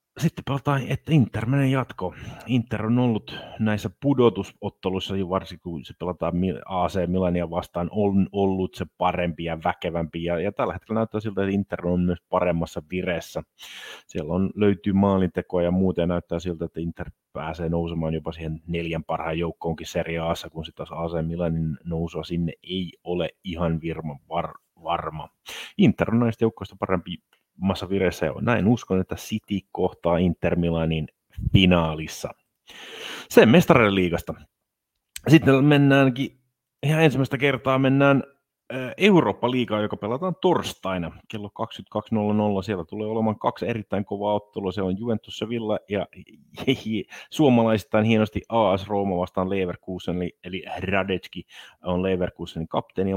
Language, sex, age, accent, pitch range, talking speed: Finnish, male, 30-49, native, 85-110 Hz, 135 wpm